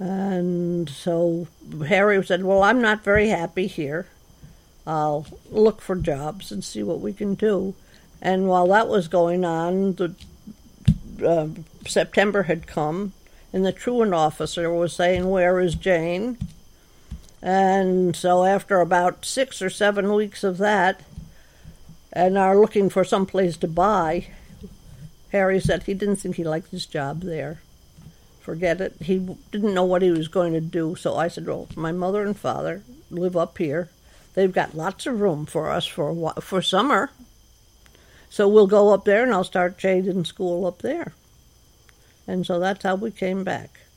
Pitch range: 170-195 Hz